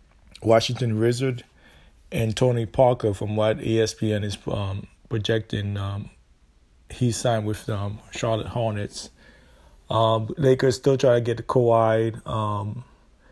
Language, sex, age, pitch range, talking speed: English, male, 30-49, 105-115 Hz, 125 wpm